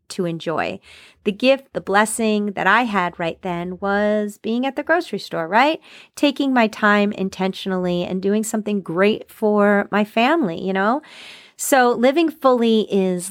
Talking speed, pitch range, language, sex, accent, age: 160 wpm, 185-245 Hz, English, female, American, 30-49